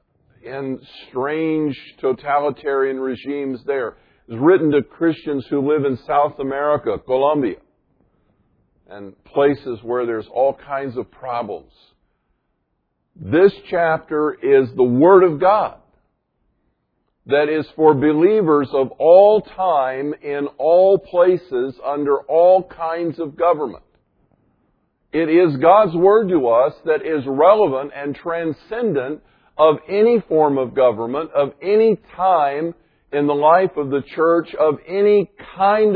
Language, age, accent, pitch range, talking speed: English, 50-69, American, 140-180 Hz, 120 wpm